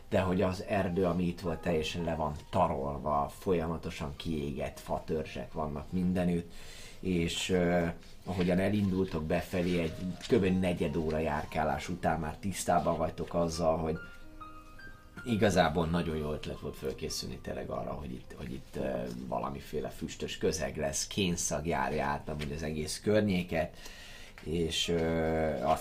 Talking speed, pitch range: 135 wpm, 75-90 Hz